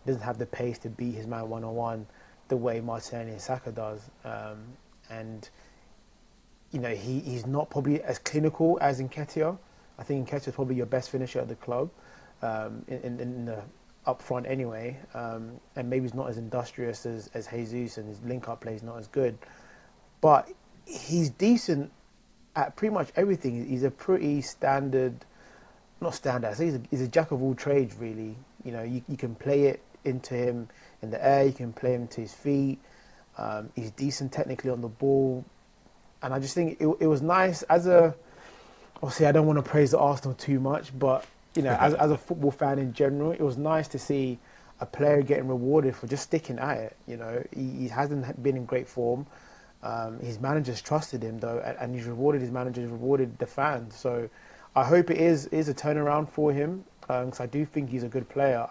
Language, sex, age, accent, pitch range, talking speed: English, male, 20-39, British, 120-145 Hz, 205 wpm